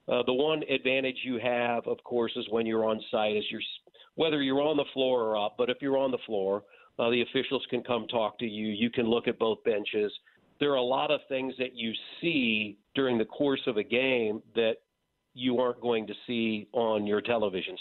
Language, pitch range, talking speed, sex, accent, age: English, 115-130 Hz, 220 wpm, male, American, 50-69